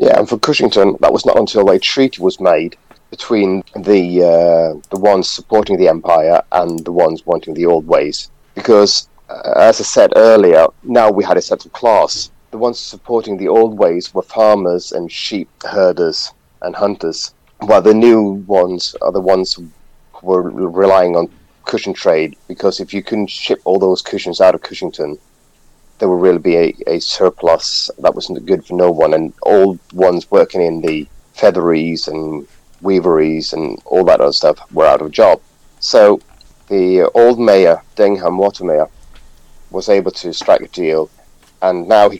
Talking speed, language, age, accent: 180 wpm, English, 30-49, British